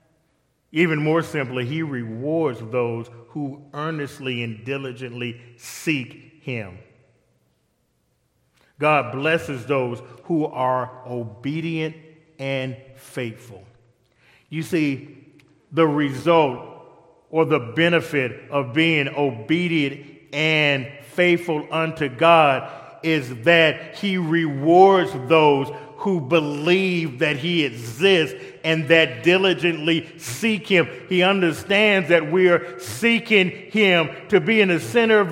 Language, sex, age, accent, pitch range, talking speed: English, male, 40-59, American, 140-190 Hz, 105 wpm